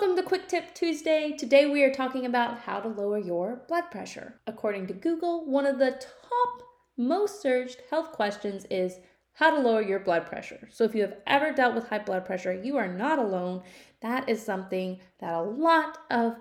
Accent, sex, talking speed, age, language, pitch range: American, female, 200 wpm, 30-49, English, 200-290 Hz